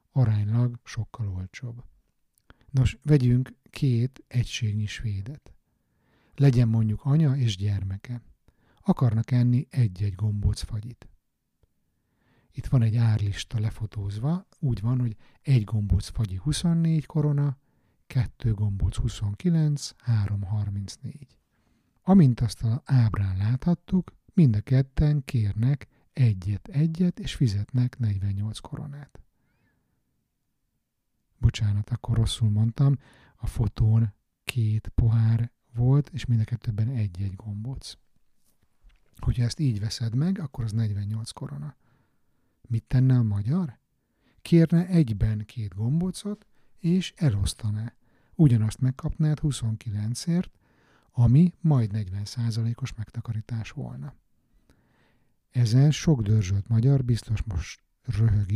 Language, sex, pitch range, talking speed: Hungarian, male, 110-140 Hz, 100 wpm